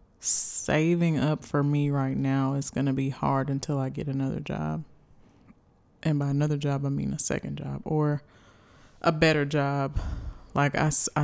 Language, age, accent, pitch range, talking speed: English, 20-39, American, 135-150 Hz, 165 wpm